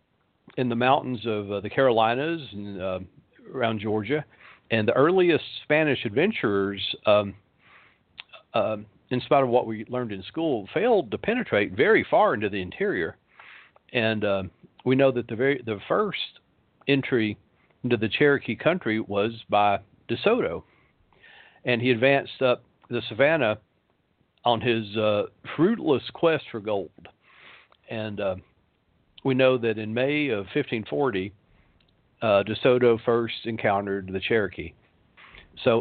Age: 50-69